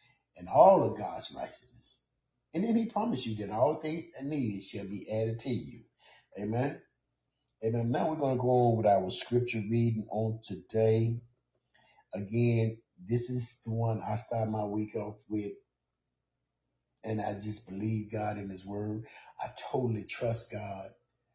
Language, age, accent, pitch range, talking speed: English, 50-69, American, 110-145 Hz, 155 wpm